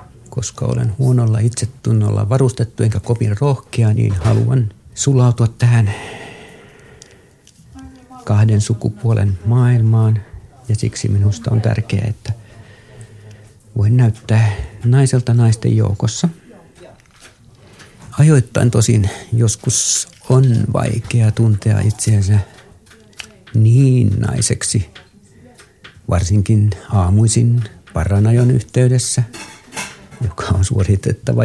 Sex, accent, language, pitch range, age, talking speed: male, native, Finnish, 105-120 Hz, 50-69, 80 wpm